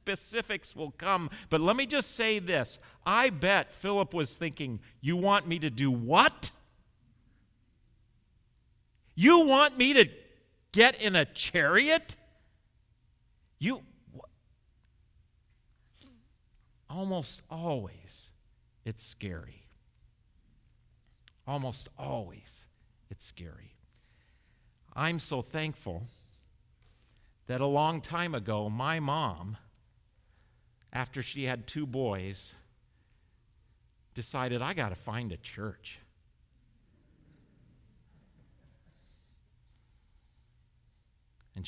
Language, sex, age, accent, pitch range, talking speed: English, male, 50-69, American, 105-160 Hz, 85 wpm